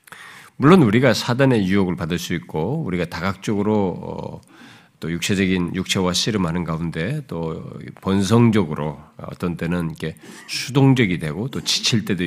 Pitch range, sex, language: 85-120 Hz, male, Korean